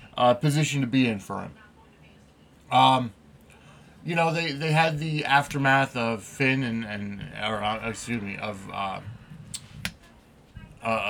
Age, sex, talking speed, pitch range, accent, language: 30-49, male, 140 wpm, 100-135 Hz, American, English